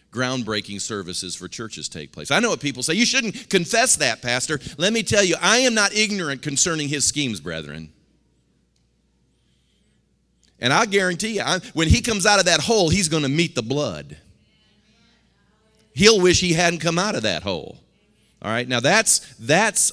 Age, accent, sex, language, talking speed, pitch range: 40-59, American, male, English, 175 wpm, 115-175 Hz